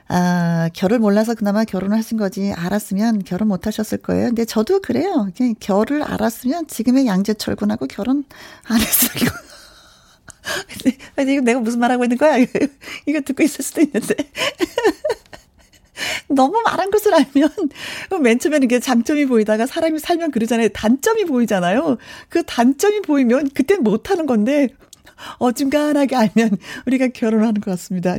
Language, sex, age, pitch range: Korean, female, 40-59, 200-285 Hz